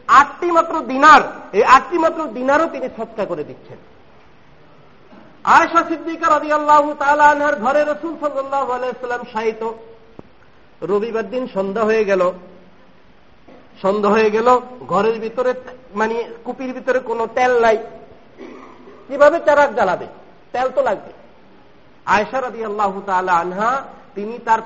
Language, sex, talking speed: Bengali, male, 35 wpm